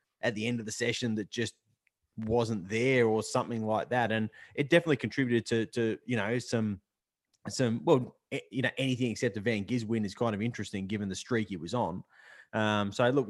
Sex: male